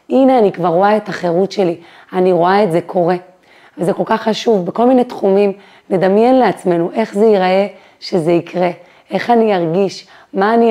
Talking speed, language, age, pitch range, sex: 175 wpm, Hebrew, 30-49, 175-220 Hz, female